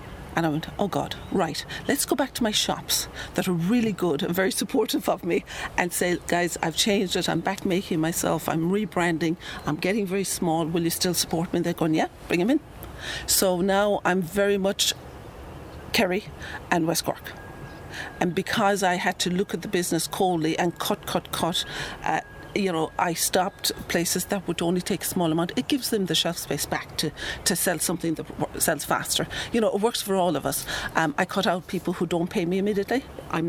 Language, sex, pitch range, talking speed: English, female, 165-200 Hz, 210 wpm